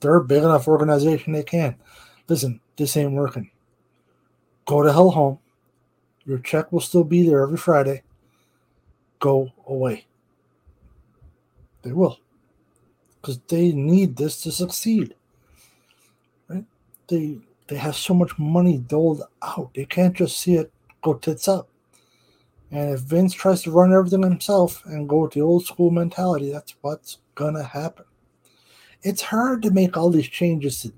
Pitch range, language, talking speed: 135-180 Hz, English, 150 wpm